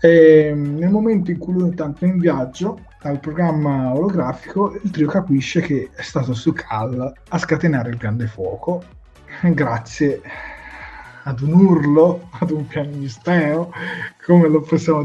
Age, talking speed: 30-49, 140 wpm